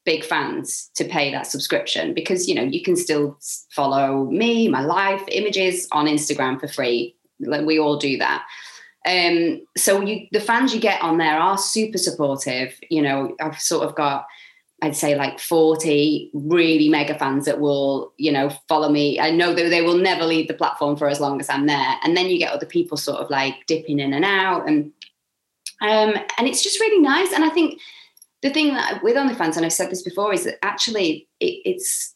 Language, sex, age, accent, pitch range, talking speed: English, female, 20-39, British, 145-215 Hz, 200 wpm